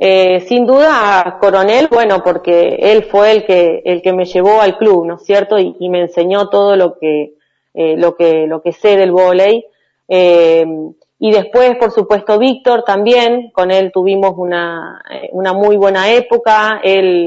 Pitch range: 180-215 Hz